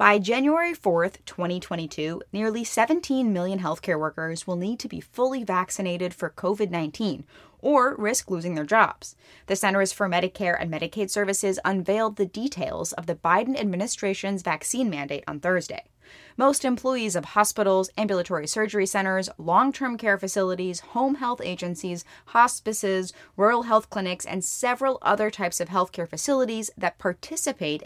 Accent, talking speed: American, 145 wpm